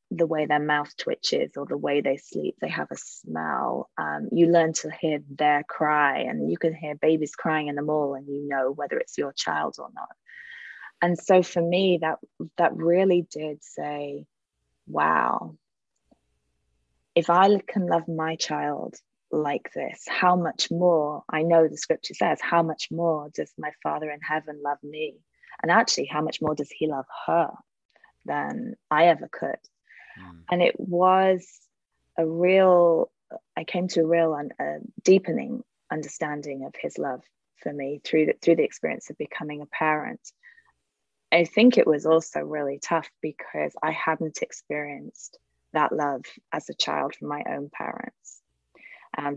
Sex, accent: female, British